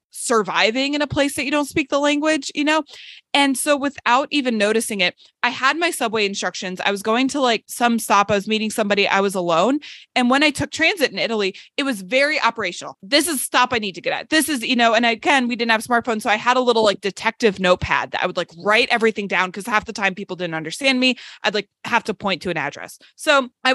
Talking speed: 255 wpm